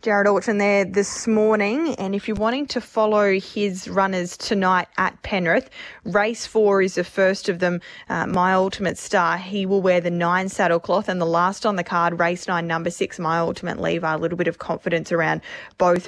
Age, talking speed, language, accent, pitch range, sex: 20-39, 200 wpm, English, Australian, 175-215 Hz, female